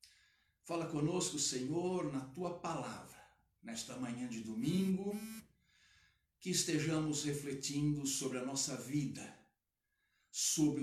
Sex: male